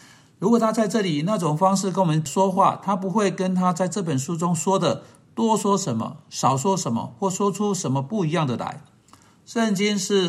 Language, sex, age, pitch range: Chinese, male, 50-69, 145-200 Hz